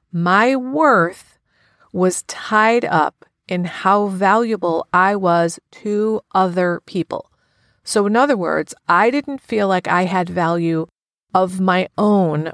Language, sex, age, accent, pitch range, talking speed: English, female, 40-59, American, 170-205 Hz, 130 wpm